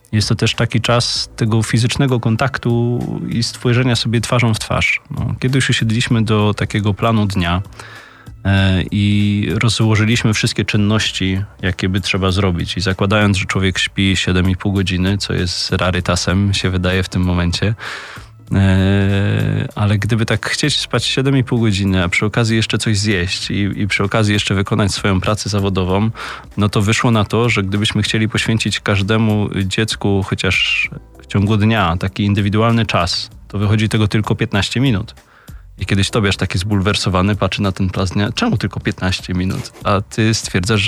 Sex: male